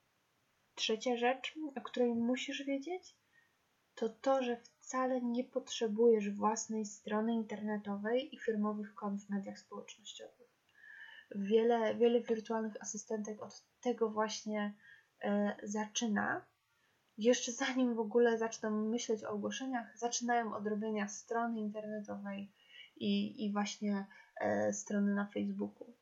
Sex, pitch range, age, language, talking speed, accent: female, 215-255 Hz, 10-29, Polish, 110 wpm, native